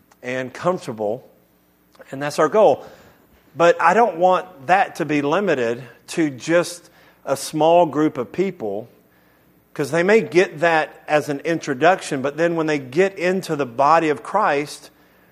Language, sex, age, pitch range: English, male, 40-59, 130-175 Hz